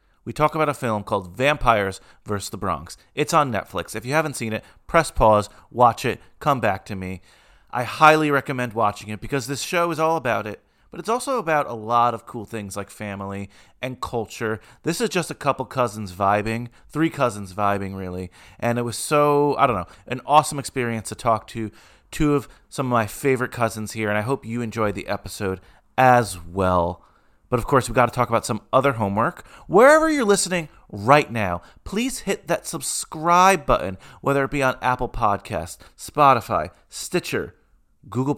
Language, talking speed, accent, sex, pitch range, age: English, 190 wpm, American, male, 100-140 Hz, 30-49